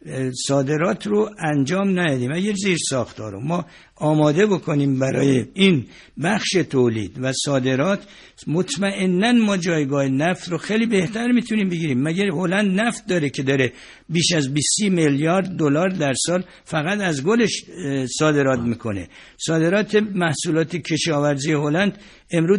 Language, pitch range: Persian, 140-190 Hz